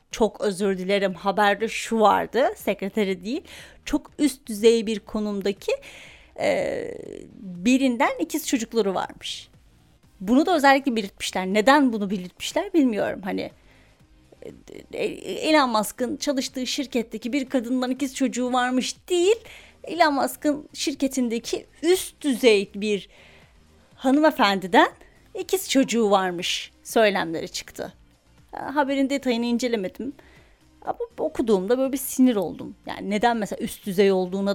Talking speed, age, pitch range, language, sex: 110 wpm, 30-49, 200-280 Hz, Turkish, female